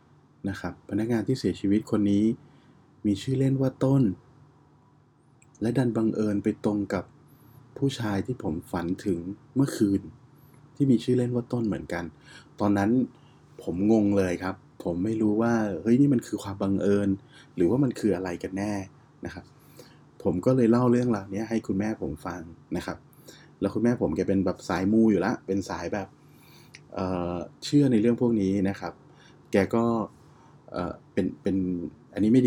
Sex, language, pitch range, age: male, Thai, 95-125 Hz, 20-39